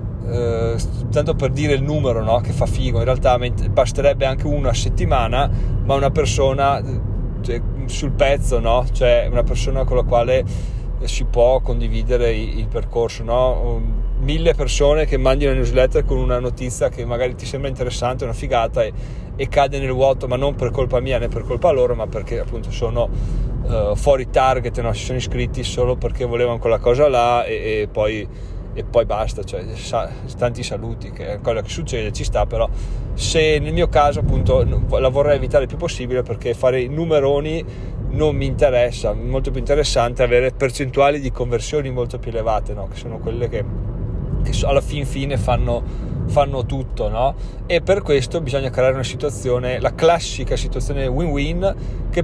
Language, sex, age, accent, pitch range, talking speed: Italian, male, 30-49, native, 115-135 Hz, 175 wpm